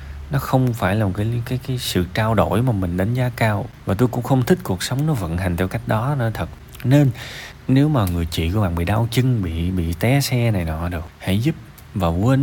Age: 20-39